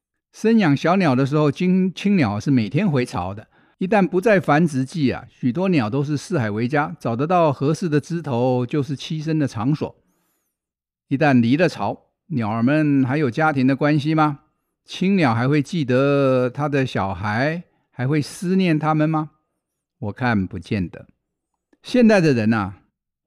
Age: 50-69